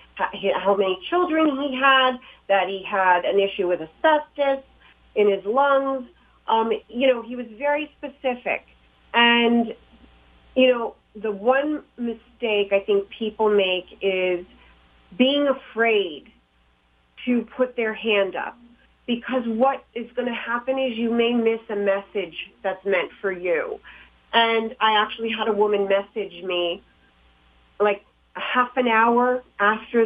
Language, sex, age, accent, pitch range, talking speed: English, female, 40-59, American, 195-245 Hz, 140 wpm